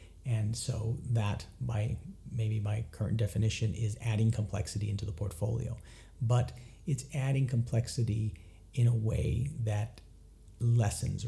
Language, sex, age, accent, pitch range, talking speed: English, male, 50-69, American, 100-115 Hz, 120 wpm